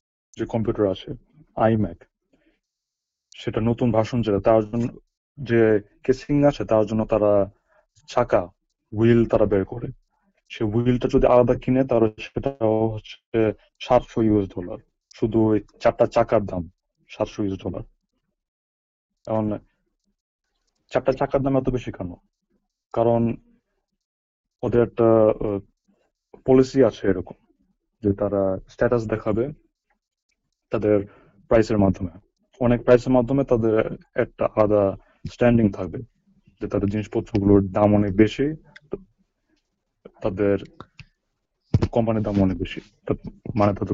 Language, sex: English, male